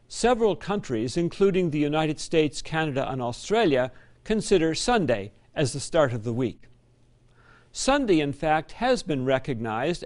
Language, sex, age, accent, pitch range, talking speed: English, male, 60-79, American, 130-190 Hz, 135 wpm